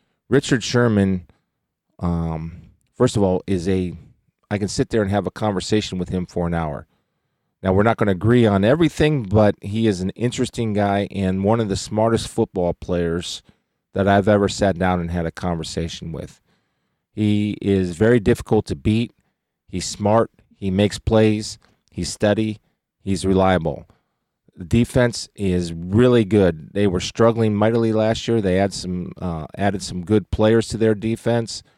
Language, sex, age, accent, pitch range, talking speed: English, male, 40-59, American, 90-110 Hz, 165 wpm